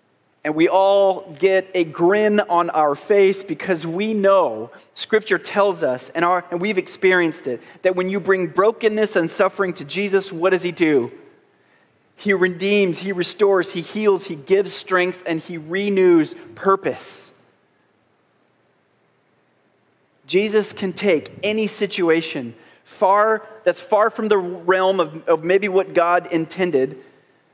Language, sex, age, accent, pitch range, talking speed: English, male, 30-49, American, 170-210 Hz, 140 wpm